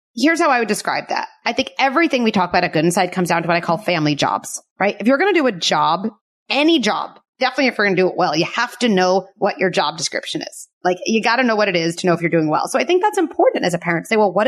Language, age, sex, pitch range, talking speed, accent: English, 30-49, female, 180-245 Hz, 315 wpm, American